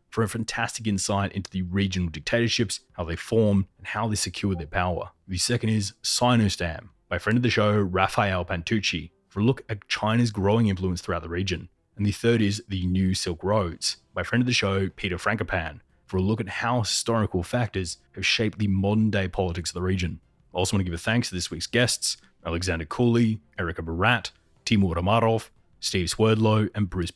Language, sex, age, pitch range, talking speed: English, male, 30-49, 90-110 Hz, 200 wpm